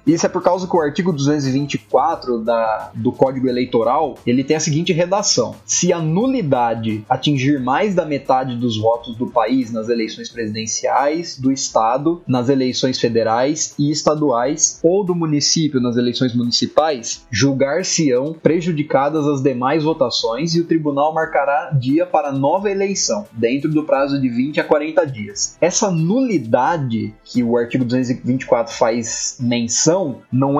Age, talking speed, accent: 20-39, 145 wpm, Brazilian